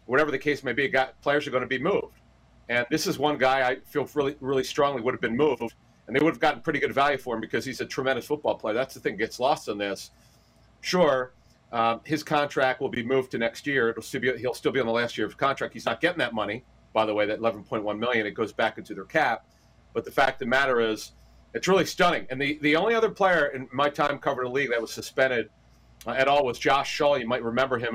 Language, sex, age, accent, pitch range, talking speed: English, male, 40-59, American, 115-145 Hz, 270 wpm